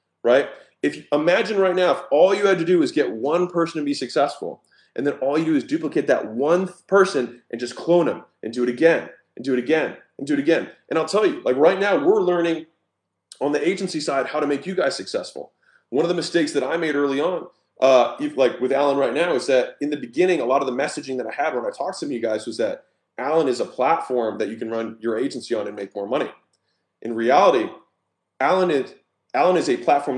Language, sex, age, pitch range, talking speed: English, male, 30-49, 130-180 Hz, 245 wpm